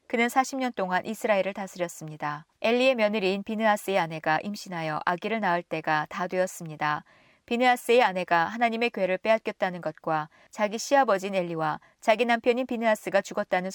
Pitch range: 170-225 Hz